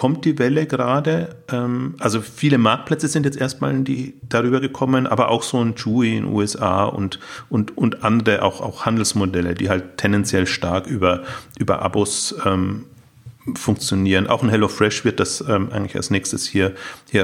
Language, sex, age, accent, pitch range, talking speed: German, male, 40-59, German, 95-125 Hz, 160 wpm